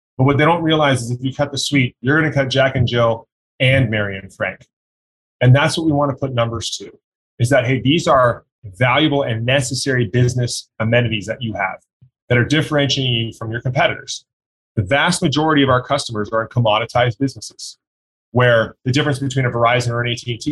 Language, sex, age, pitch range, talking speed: English, male, 30-49, 115-135 Hz, 205 wpm